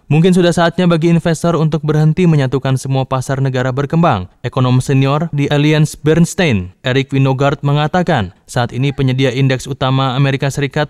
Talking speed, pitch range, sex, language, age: 150 wpm, 130-160 Hz, male, Indonesian, 20-39